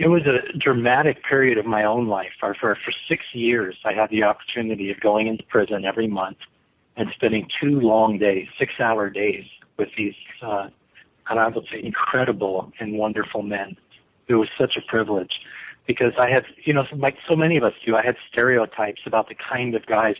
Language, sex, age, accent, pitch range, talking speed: English, male, 50-69, American, 110-130 Hz, 185 wpm